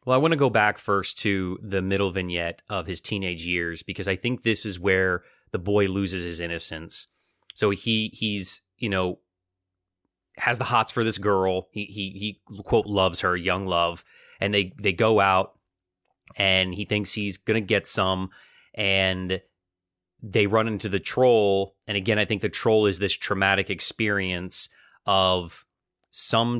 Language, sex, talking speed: English, male, 170 wpm